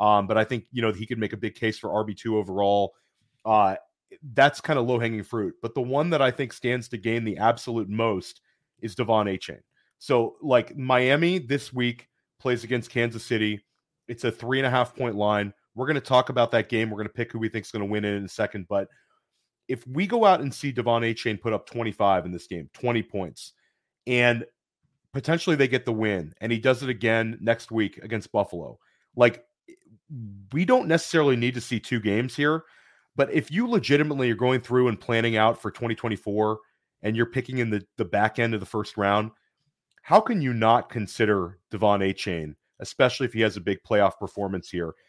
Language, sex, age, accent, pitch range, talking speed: English, male, 30-49, American, 105-130 Hz, 205 wpm